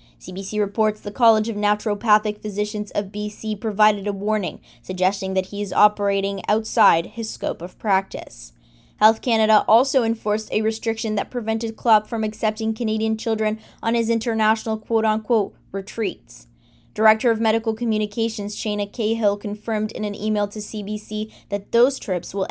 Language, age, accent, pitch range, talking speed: English, 10-29, American, 200-225 Hz, 150 wpm